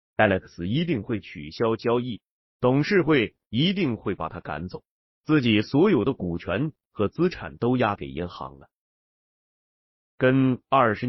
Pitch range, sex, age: 95-140 Hz, male, 30-49